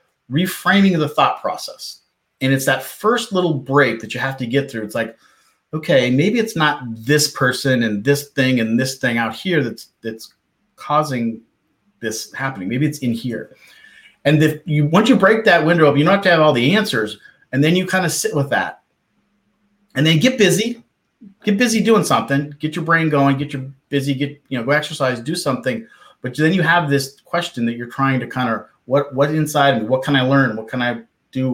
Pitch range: 125-160 Hz